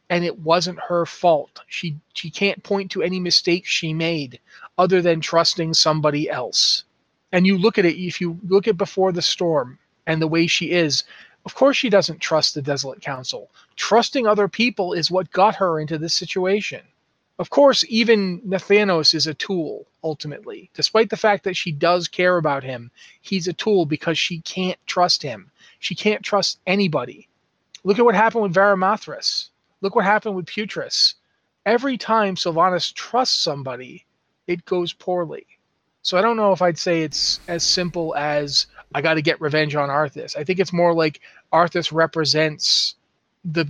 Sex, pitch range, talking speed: male, 155-195 Hz, 175 wpm